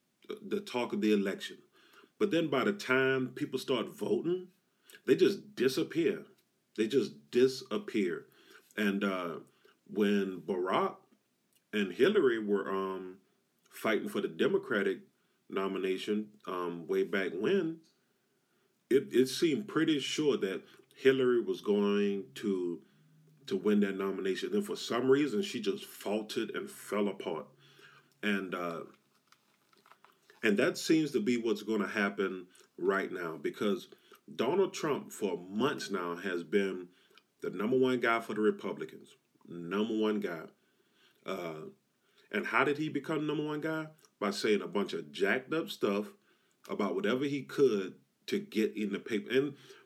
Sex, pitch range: male, 100-150 Hz